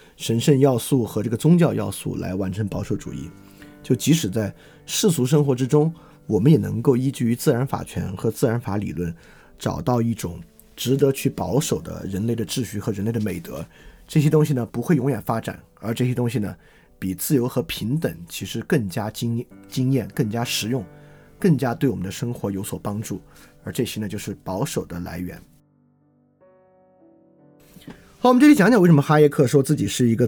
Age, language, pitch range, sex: 30-49, Chinese, 105-145 Hz, male